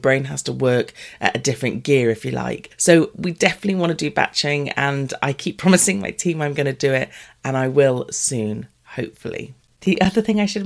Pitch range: 135-195 Hz